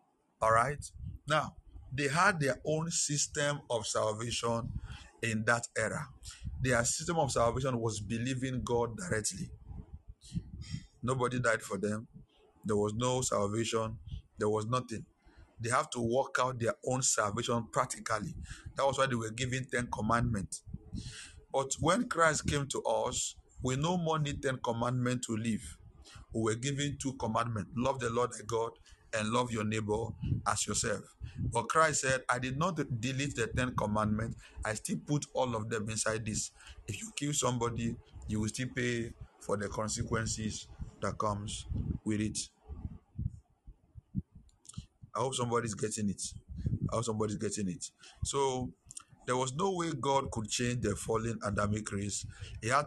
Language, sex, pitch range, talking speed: English, male, 105-130 Hz, 155 wpm